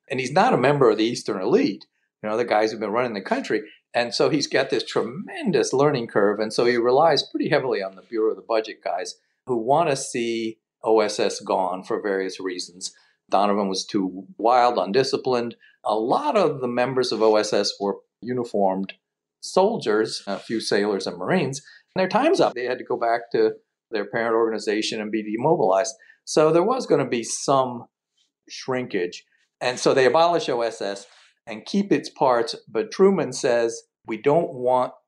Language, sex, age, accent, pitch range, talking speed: English, male, 50-69, American, 110-140 Hz, 185 wpm